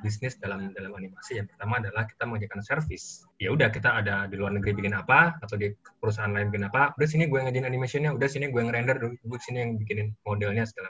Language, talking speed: Indonesian, 220 wpm